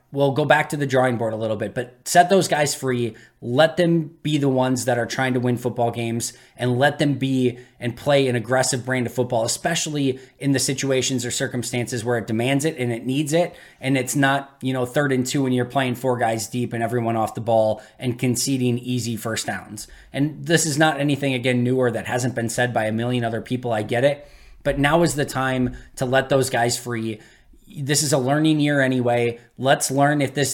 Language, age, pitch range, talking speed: English, 20-39, 120-145 Hz, 225 wpm